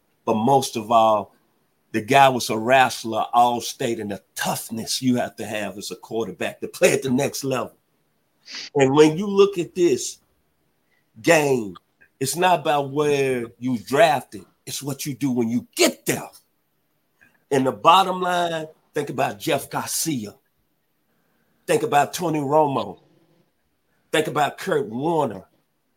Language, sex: English, male